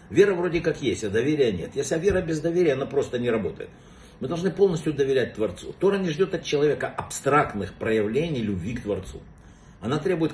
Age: 60-79